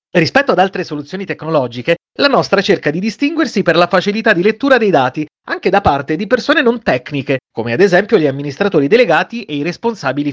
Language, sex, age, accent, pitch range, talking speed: Italian, male, 30-49, native, 140-210 Hz, 190 wpm